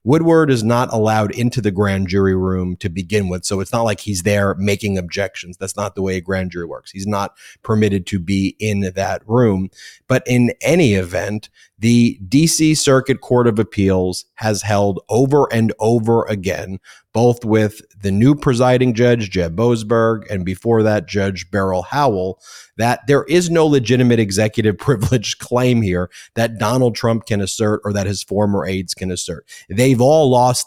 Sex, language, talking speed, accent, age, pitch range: male, English, 180 wpm, American, 30-49, 100-125 Hz